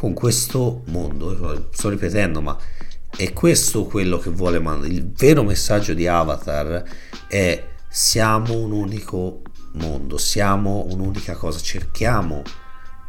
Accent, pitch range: native, 75-105 Hz